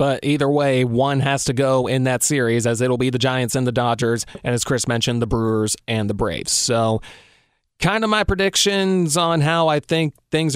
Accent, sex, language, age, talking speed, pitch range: American, male, English, 30-49, 210 wpm, 125-150 Hz